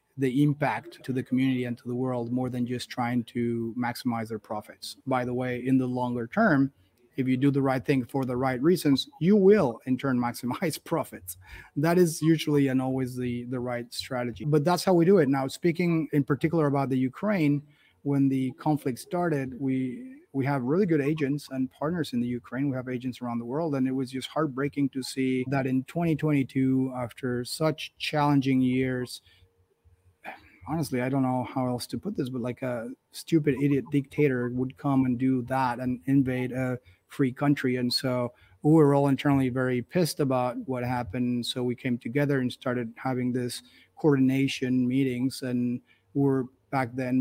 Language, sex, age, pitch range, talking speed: English, male, 30-49, 125-140 Hz, 190 wpm